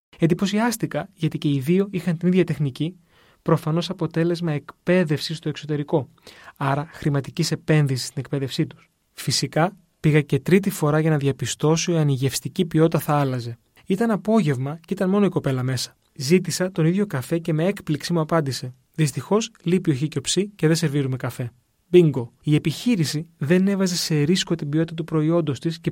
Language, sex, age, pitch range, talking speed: Greek, male, 20-39, 140-175 Hz, 165 wpm